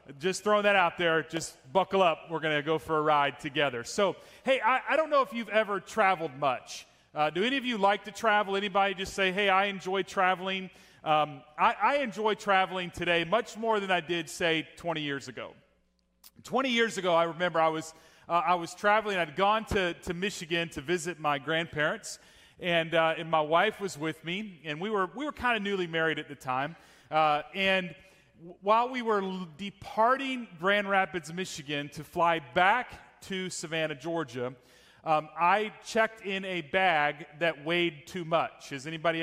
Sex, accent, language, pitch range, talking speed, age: male, American, English, 155-200 Hz, 190 wpm, 30-49